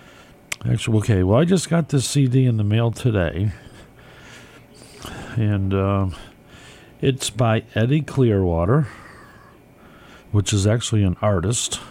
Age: 50-69